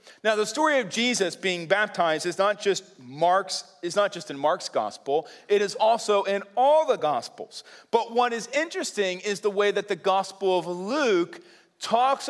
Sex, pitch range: male, 175-245 Hz